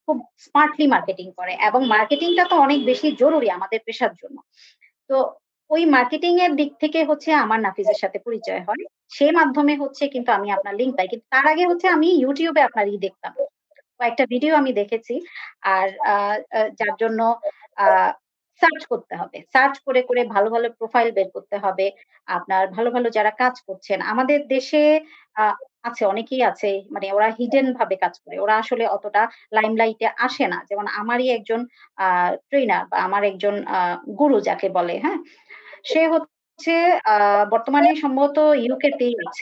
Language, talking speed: Bengali, 55 wpm